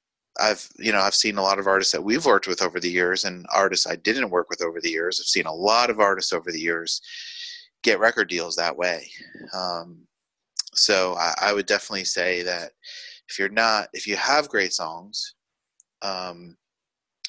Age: 30-49